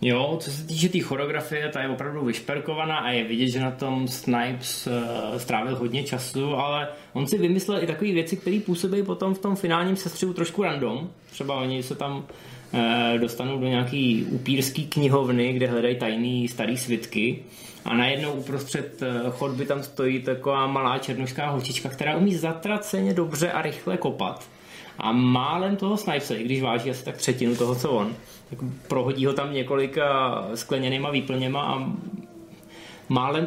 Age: 20-39